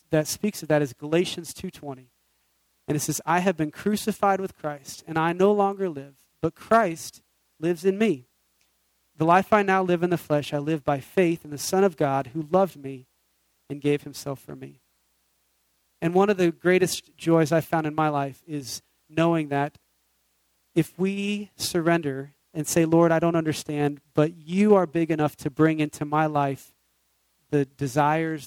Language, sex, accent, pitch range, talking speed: English, male, American, 140-170 Hz, 180 wpm